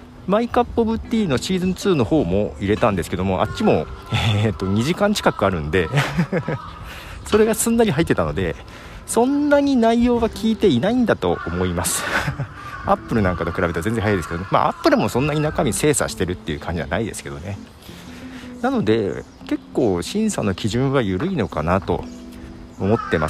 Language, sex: Japanese, male